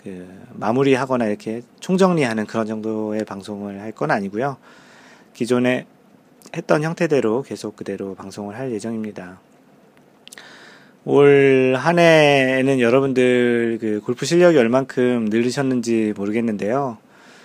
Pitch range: 110-145 Hz